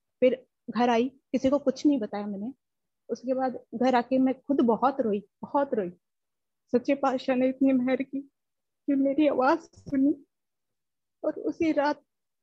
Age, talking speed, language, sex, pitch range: 20-39, 150 wpm, Punjabi, female, 260-315 Hz